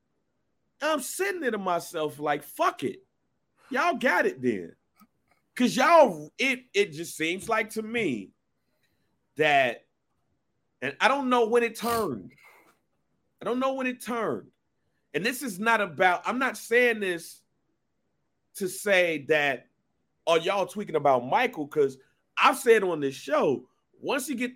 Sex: male